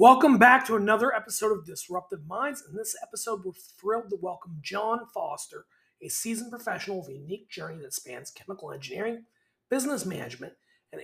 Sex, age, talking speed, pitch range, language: male, 30-49, 170 wpm, 185-235 Hz, English